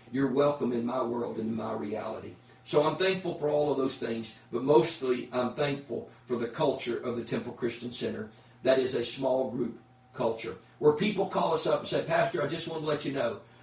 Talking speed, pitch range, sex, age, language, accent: 220 wpm, 120-135 Hz, male, 40-59, English, American